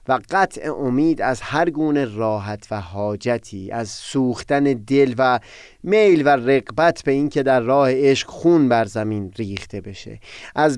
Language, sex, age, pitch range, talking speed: Persian, male, 30-49, 115-155 Hz, 150 wpm